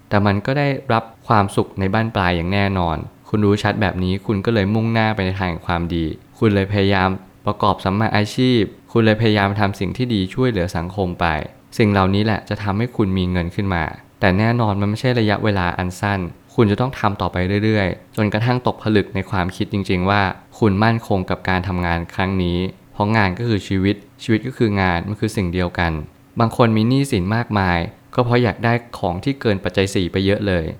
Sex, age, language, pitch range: male, 20-39, Thai, 95-115 Hz